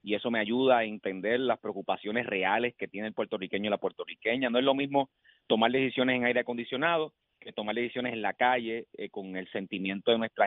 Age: 30-49